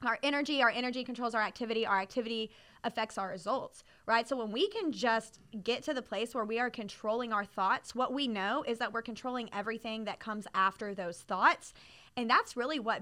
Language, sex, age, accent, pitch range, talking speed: English, female, 20-39, American, 215-255 Hz, 205 wpm